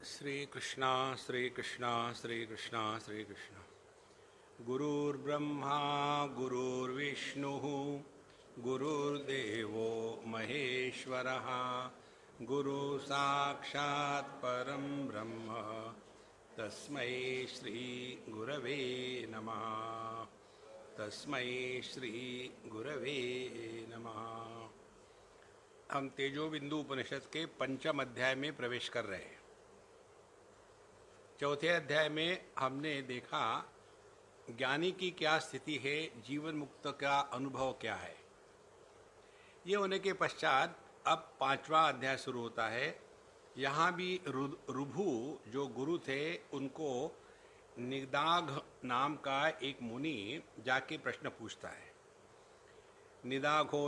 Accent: Indian